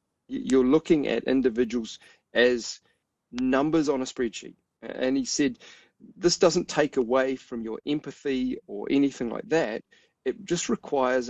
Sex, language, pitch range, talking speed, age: male, English, 120-150 Hz, 140 wpm, 40-59